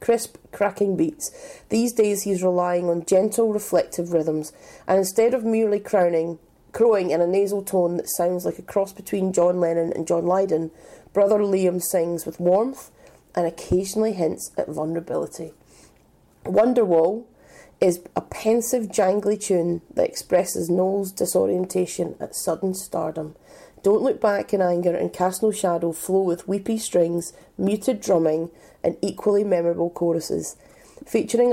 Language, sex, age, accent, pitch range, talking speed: English, female, 30-49, British, 170-205 Hz, 140 wpm